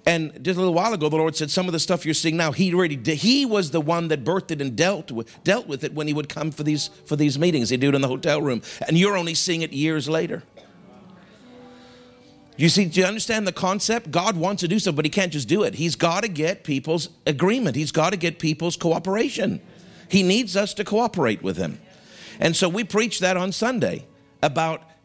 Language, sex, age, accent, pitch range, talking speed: English, male, 50-69, American, 150-185 Hz, 240 wpm